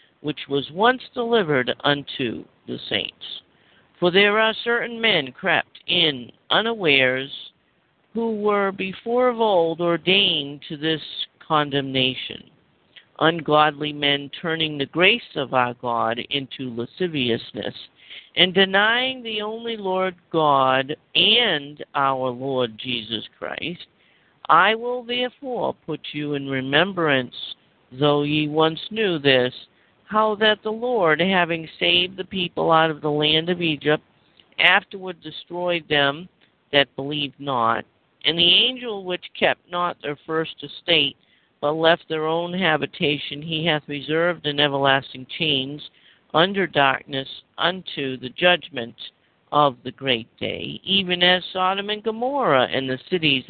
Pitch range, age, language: 140-185 Hz, 50-69, English